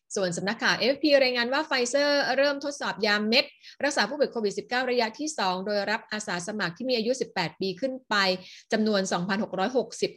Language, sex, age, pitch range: Thai, female, 30-49, 185-230 Hz